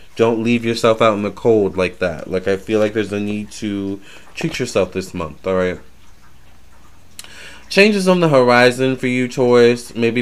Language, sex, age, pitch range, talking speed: English, male, 20-39, 95-120 Hz, 180 wpm